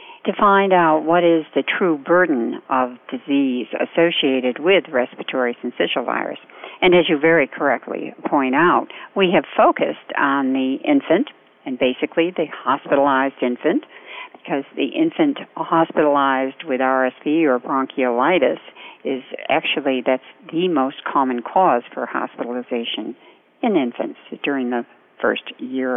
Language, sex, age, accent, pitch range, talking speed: English, female, 60-79, American, 130-180 Hz, 130 wpm